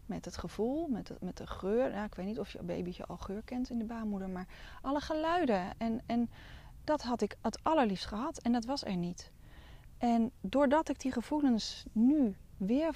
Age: 30-49